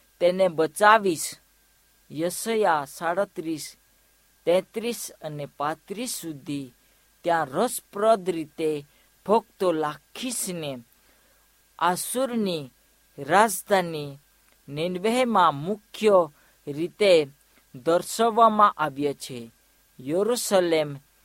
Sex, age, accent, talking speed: female, 50-69, native, 45 wpm